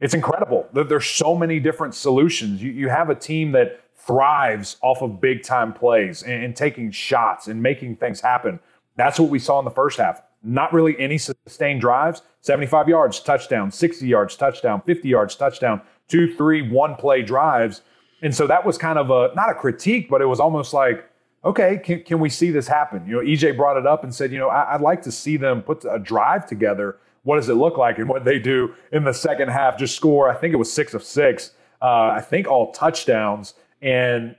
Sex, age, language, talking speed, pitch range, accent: male, 30-49, English, 215 wpm, 125-155 Hz, American